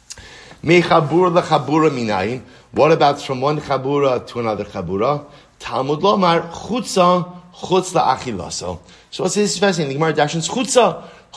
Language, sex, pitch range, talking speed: English, male, 150-195 Hz, 120 wpm